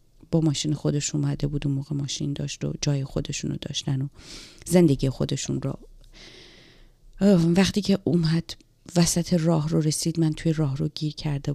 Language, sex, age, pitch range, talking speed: Persian, female, 30-49, 145-175 Hz, 150 wpm